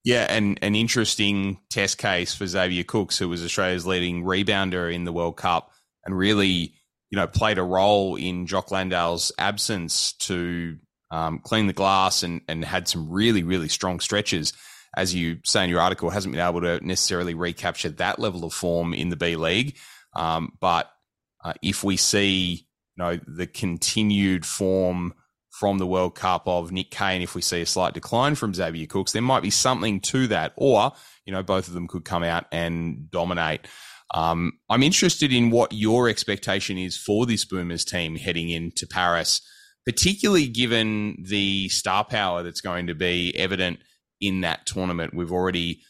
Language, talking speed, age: English, 180 wpm, 20-39